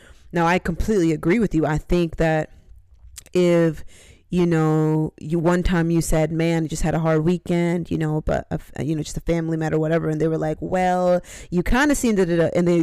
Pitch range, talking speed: 155-180 Hz, 225 wpm